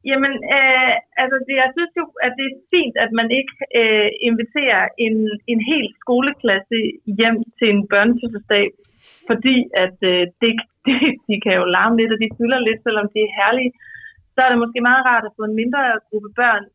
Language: Danish